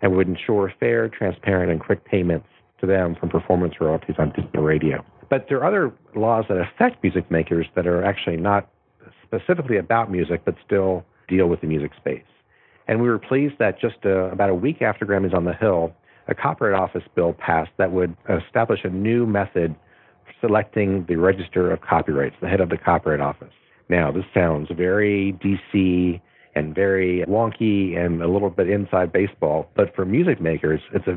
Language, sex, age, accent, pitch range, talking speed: English, male, 50-69, American, 85-100 Hz, 185 wpm